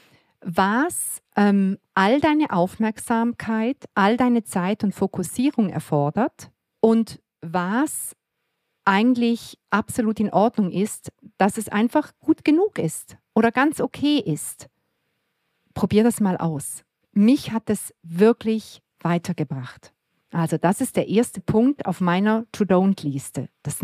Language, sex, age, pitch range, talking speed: German, female, 50-69, 170-225 Hz, 120 wpm